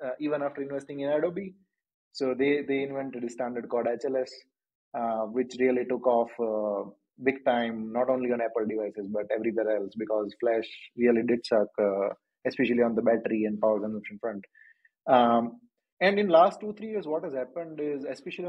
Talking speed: 180 wpm